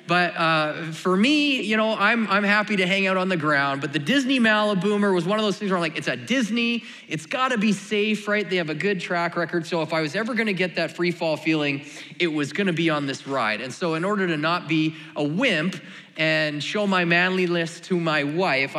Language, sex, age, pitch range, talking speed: English, male, 30-49, 150-200 Hz, 250 wpm